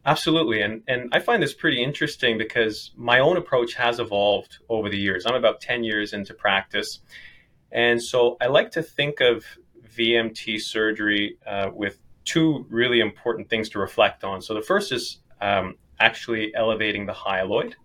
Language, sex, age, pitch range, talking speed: English, male, 20-39, 105-130 Hz, 170 wpm